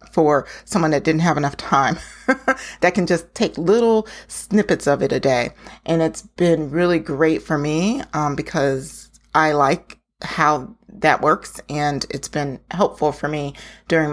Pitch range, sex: 155-190 Hz, female